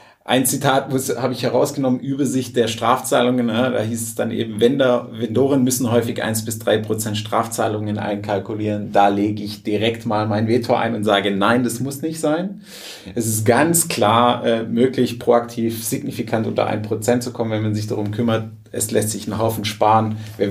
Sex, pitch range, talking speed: male, 105-120 Hz, 175 wpm